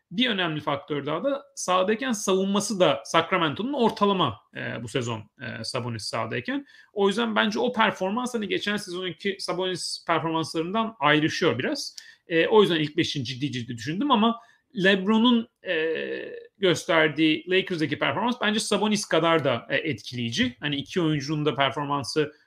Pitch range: 140-185 Hz